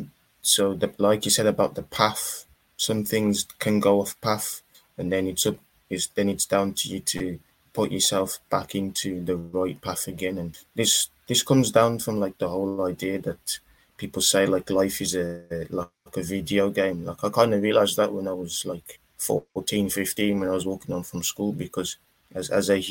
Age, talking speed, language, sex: 20-39, 200 wpm, English, male